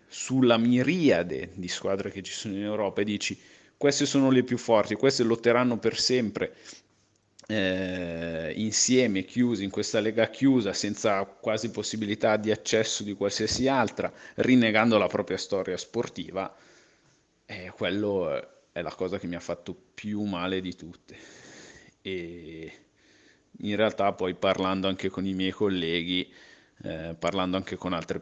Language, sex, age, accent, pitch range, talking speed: Italian, male, 30-49, native, 90-120 Hz, 145 wpm